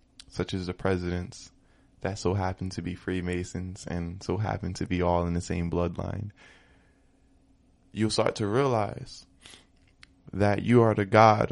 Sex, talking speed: male, 150 wpm